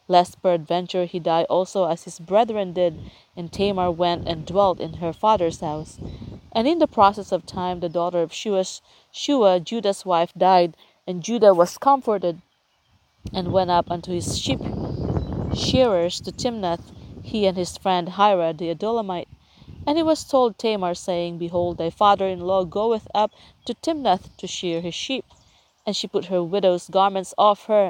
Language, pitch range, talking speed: English, 170-205 Hz, 165 wpm